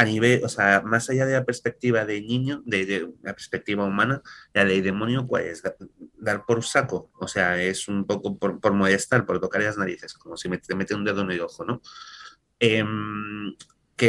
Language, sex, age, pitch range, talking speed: Spanish, male, 30-49, 95-120 Hz, 210 wpm